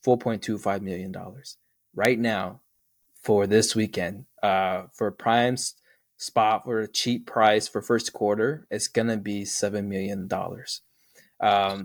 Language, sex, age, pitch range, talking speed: English, male, 20-39, 105-125 Hz, 130 wpm